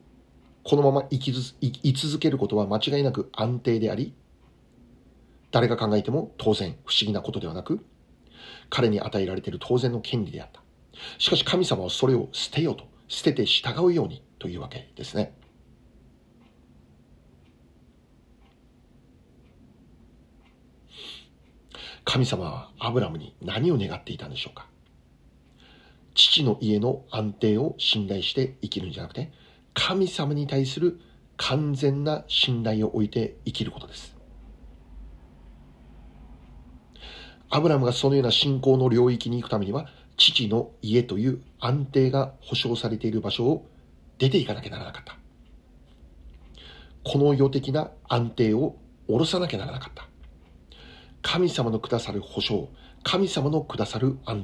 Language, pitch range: Japanese, 100-140 Hz